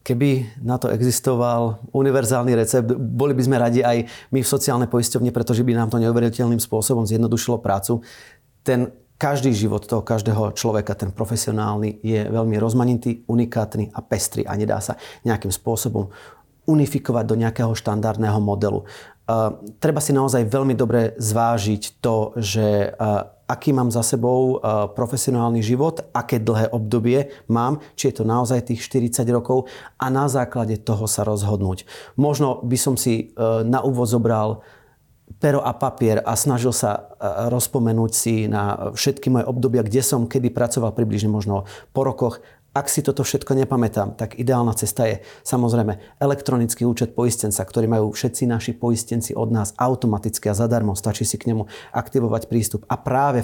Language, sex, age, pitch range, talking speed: Slovak, male, 30-49, 110-130 Hz, 155 wpm